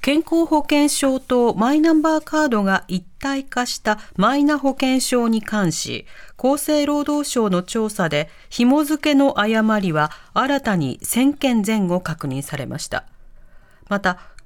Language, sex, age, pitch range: Japanese, female, 40-59, 190-280 Hz